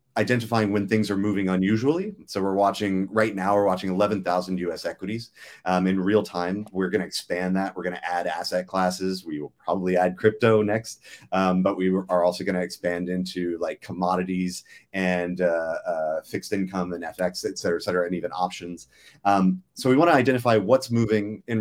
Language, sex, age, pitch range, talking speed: English, male, 30-49, 90-110 Hz, 195 wpm